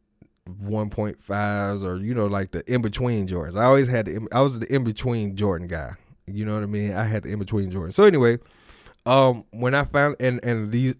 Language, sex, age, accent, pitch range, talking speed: English, male, 20-39, American, 100-120 Hz, 220 wpm